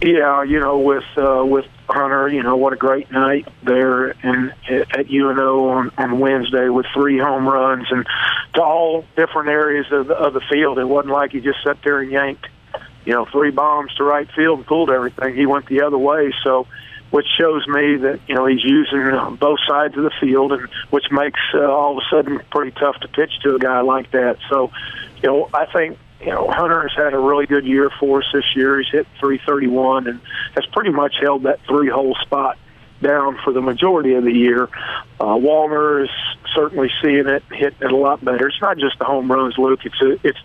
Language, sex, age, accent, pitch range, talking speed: English, male, 50-69, American, 130-145 Hz, 220 wpm